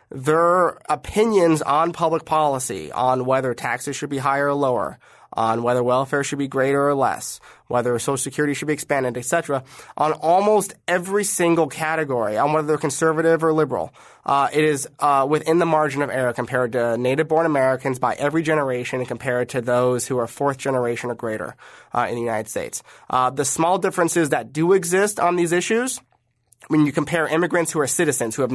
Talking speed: 185 wpm